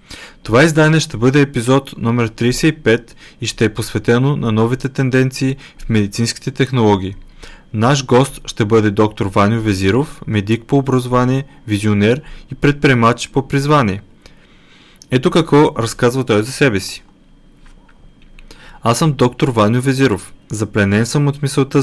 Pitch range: 110-140 Hz